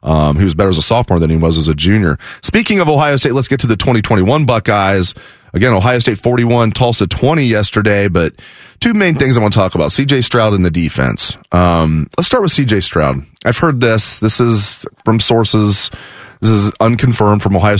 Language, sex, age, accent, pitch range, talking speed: English, male, 30-49, American, 100-135 Hz, 210 wpm